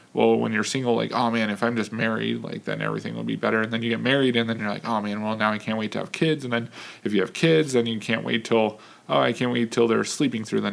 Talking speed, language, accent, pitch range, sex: 315 wpm, English, American, 115-135 Hz, male